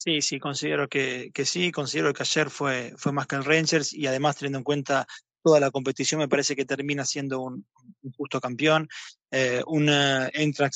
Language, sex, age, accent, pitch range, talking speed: Spanish, male, 20-39, Argentinian, 135-160 Hz, 195 wpm